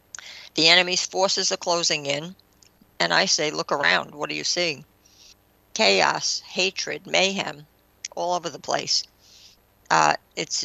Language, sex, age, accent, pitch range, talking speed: English, female, 60-79, American, 145-185 Hz, 135 wpm